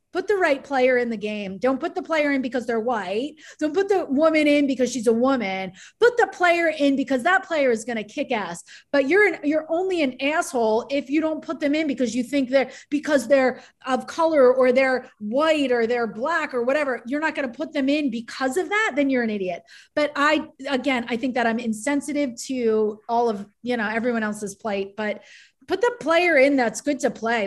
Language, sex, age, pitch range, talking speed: English, female, 30-49, 220-285 Hz, 225 wpm